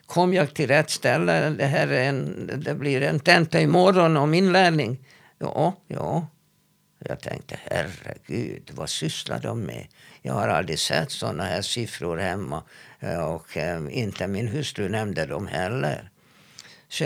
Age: 60-79